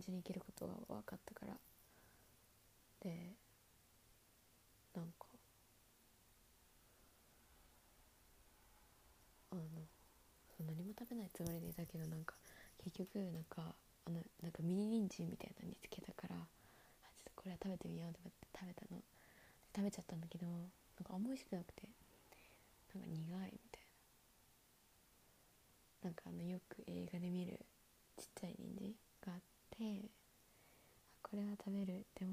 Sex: female